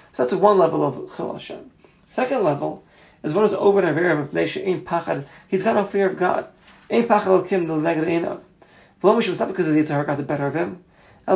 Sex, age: male, 30-49